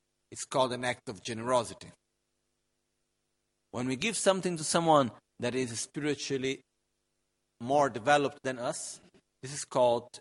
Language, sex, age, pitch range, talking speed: Italian, male, 50-69, 110-155 Hz, 130 wpm